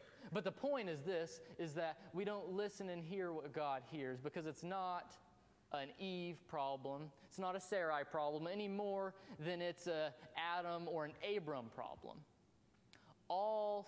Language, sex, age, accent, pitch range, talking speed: English, male, 20-39, American, 140-180 Hz, 160 wpm